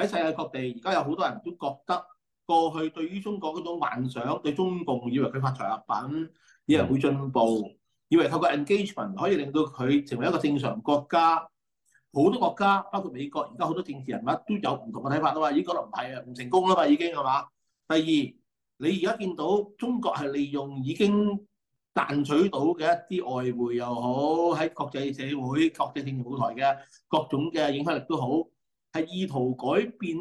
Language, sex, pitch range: Chinese, male, 135-180 Hz